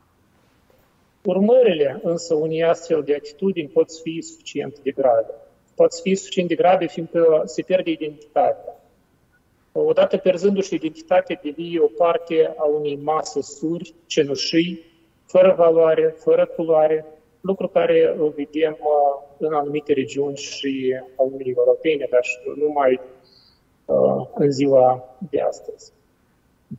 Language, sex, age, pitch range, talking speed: Romanian, male, 40-59, 150-185 Hz, 120 wpm